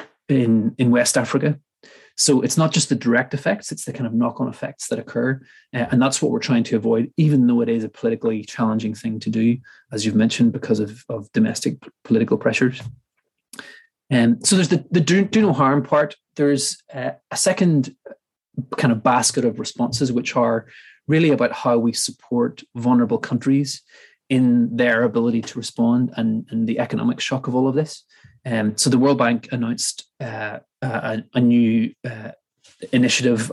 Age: 20-39